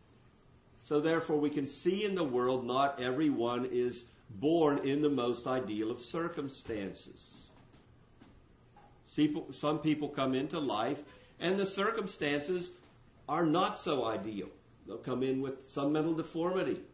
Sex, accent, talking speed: male, American, 130 wpm